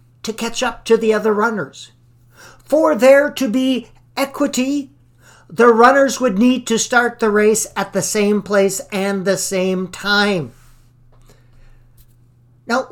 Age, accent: 50-69, American